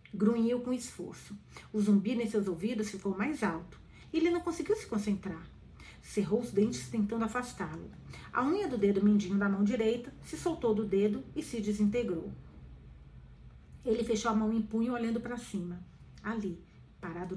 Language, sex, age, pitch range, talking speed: Portuguese, female, 40-59, 195-245 Hz, 160 wpm